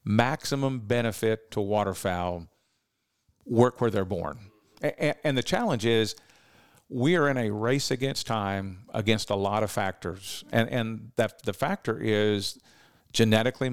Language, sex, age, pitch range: English, male, 50-69, 105-125 Hz